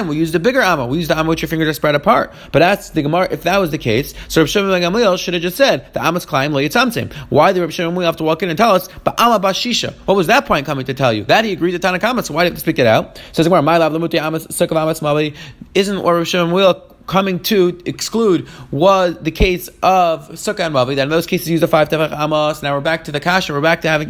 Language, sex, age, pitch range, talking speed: English, male, 30-49, 155-190 Hz, 280 wpm